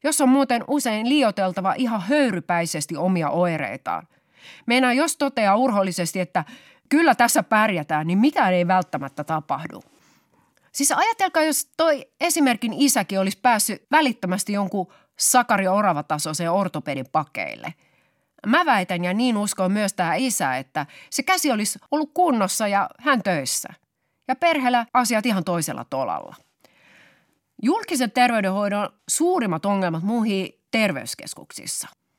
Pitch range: 180-260 Hz